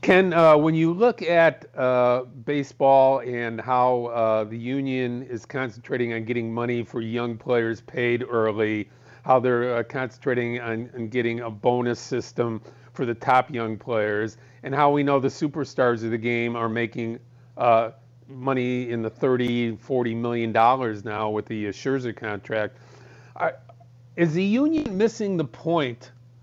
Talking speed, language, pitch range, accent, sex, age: 150 wpm, English, 120-145 Hz, American, male, 50-69